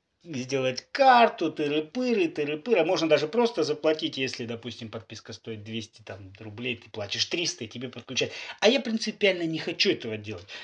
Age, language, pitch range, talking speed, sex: 30-49, Russian, 120-170 Hz, 160 wpm, male